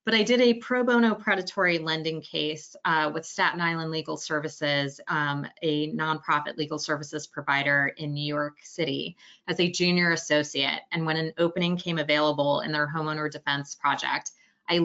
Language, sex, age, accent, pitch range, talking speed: English, female, 20-39, American, 150-170 Hz, 165 wpm